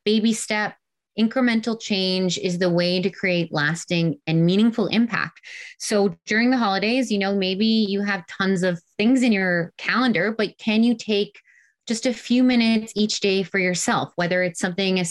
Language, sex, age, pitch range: English, female, 20-39, 170-210 Hz